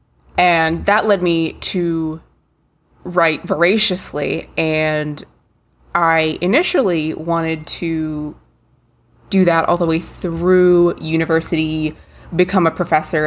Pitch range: 160-185 Hz